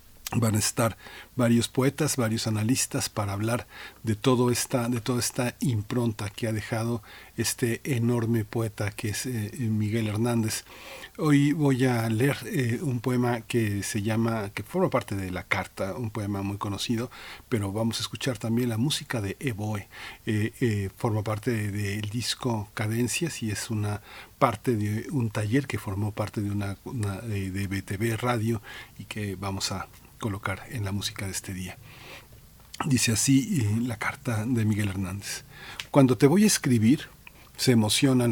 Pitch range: 105-125 Hz